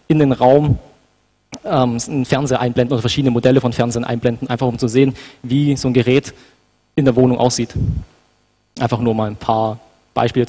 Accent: German